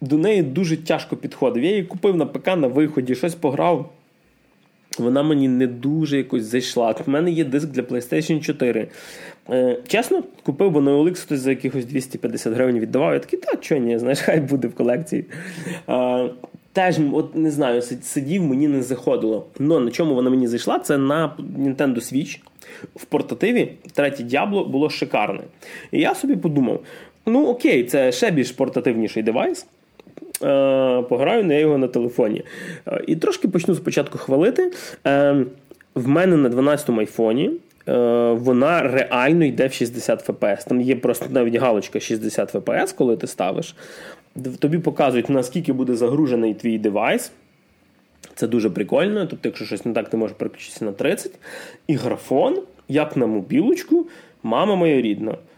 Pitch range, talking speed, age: 125-160 Hz, 155 wpm, 20-39